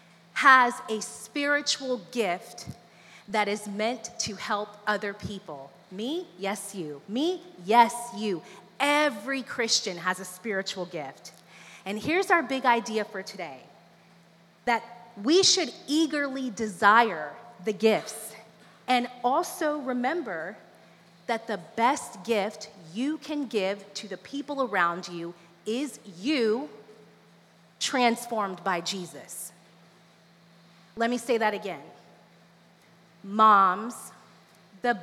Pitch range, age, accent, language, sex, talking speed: 200-275 Hz, 30-49, American, English, female, 110 wpm